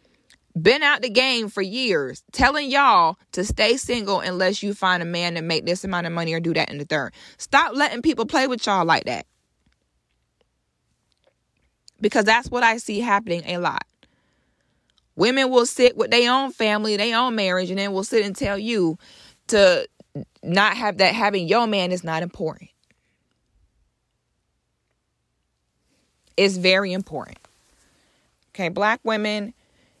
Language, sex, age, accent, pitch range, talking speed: English, female, 20-39, American, 175-225 Hz, 155 wpm